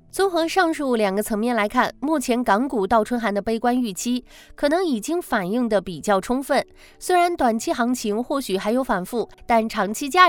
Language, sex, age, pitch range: Chinese, female, 20-39, 205-280 Hz